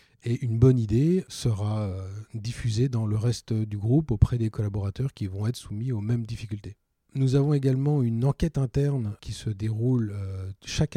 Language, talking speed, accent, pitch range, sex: French, 170 wpm, French, 110-135 Hz, male